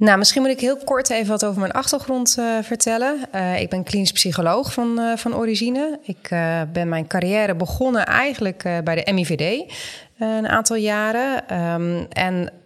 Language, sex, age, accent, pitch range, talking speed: Dutch, female, 30-49, Dutch, 175-220 Hz, 185 wpm